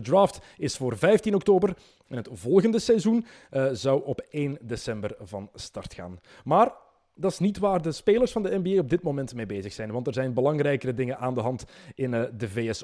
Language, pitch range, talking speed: Dutch, 125-180 Hz, 215 wpm